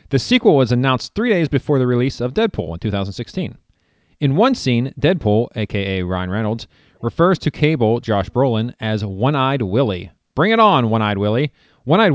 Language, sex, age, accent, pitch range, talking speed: English, male, 30-49, American, 105-135 Hz, 170 wpm